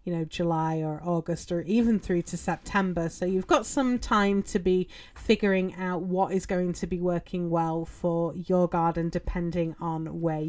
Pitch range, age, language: 175-215 Hz, 30-49, English